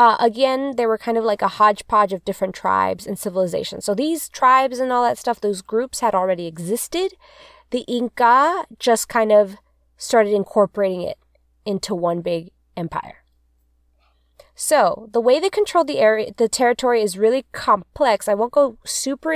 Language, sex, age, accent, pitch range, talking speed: English, female, 20-39, American, 200-265 Hz, 165 wpm